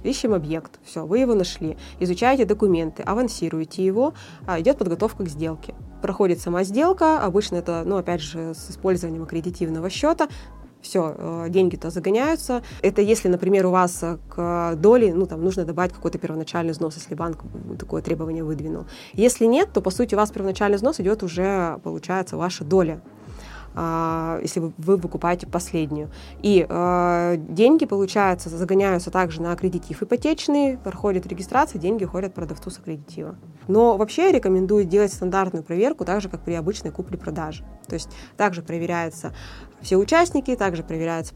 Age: 20-39